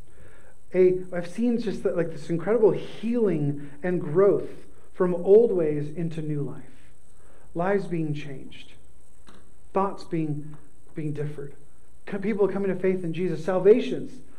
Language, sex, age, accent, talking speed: English, male, 30-49, American, 120 wpm